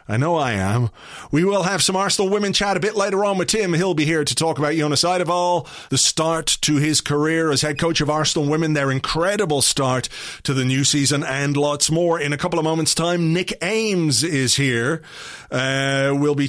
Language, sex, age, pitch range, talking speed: English, male, 30-49, 135-165 Hz, 215 wpm